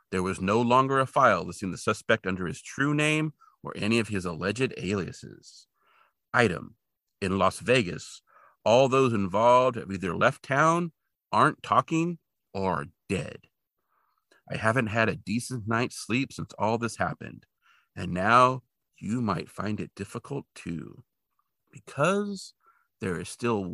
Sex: male